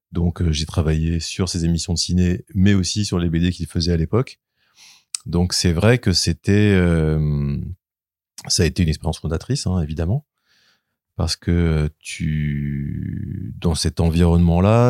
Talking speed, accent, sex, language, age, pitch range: 155 wpm, French, male, French, 30-49, 80-95 Hz